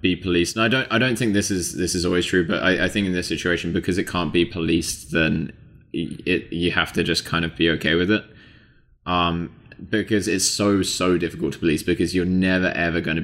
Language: English